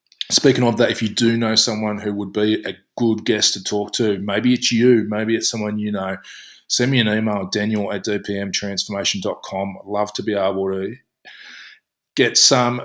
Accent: Australian